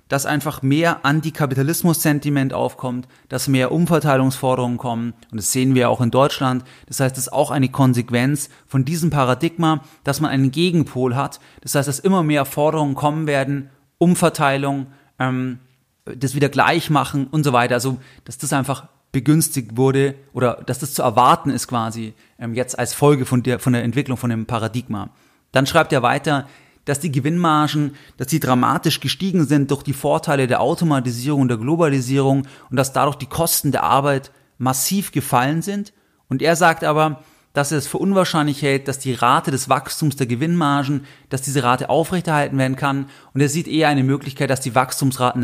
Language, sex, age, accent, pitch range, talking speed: German, male, 30-49, German, 130-150 Hz, 180 wpm